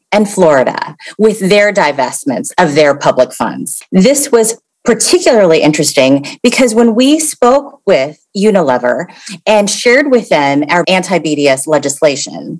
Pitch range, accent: 165-235 Hz, American